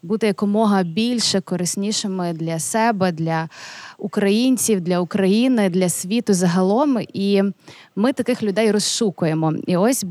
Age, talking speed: 20-39, 120 wpm